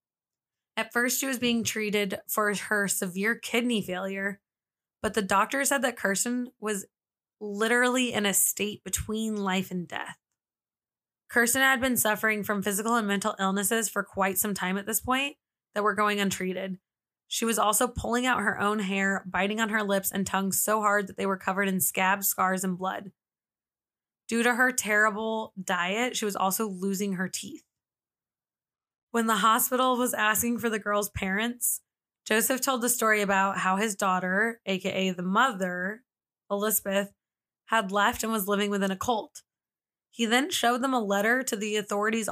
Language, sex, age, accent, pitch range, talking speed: English, female, 20-39, American, 195-235 Hz, 170 wpm